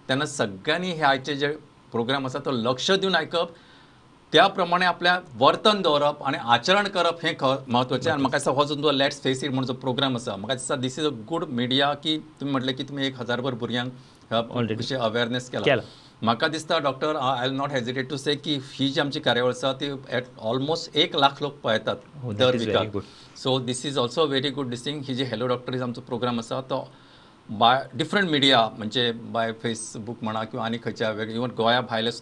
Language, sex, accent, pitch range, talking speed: English, male, Indian, 120-145 Hz, 100 wpm